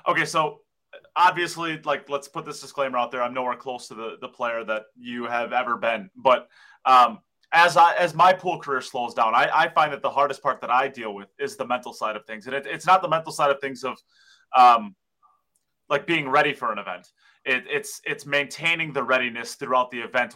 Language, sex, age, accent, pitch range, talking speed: English, male, 20-39, American, 120-155 Hz, 215 wpm